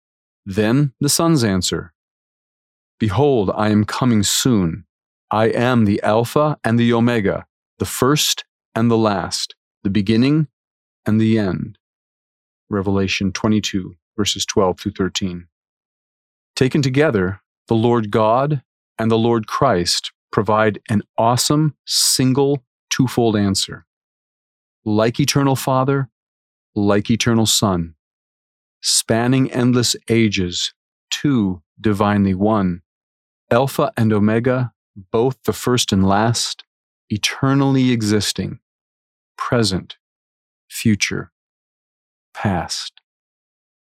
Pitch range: 95-120 Hz